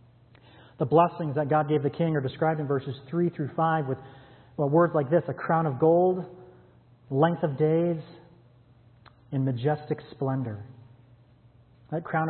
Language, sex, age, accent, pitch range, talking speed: English, male, 30-49, American, 135-170 Hz, 150 wpm